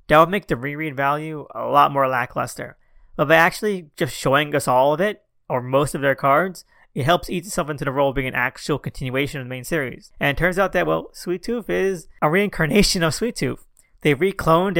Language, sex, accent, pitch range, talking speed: English, male, American, 135-160 Hz, 225 wpm